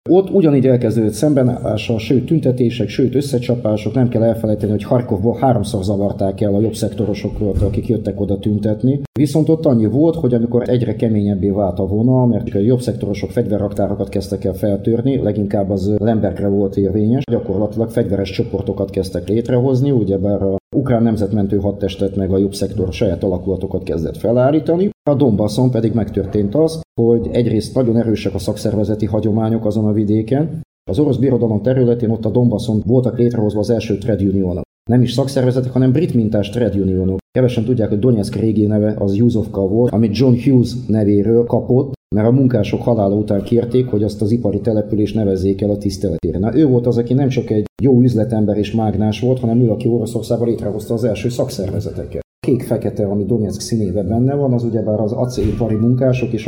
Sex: male